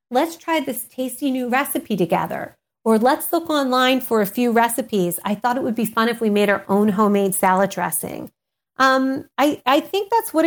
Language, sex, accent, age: English, female, American, 40-59